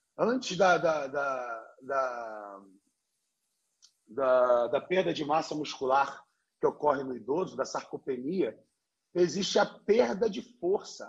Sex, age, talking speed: male, 40-59, 95 wpm